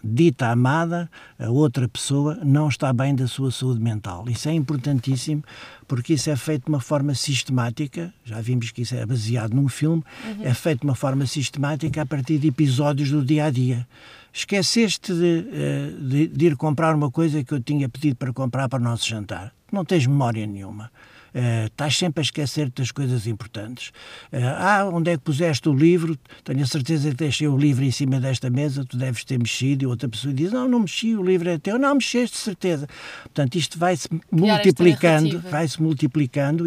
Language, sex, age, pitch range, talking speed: Portuguese, male, 60-79, 130-160 Hz, 195 wpm